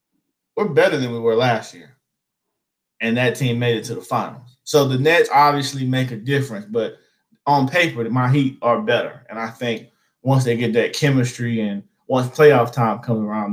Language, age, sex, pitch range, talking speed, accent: English, 20-39, male, 120-140 Hz, 190 wpm, American